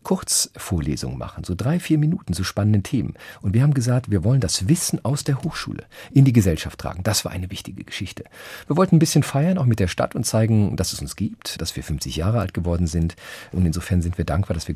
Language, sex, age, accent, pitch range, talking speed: German, male, 40-59, German, 90-120 Hz, 235 wpm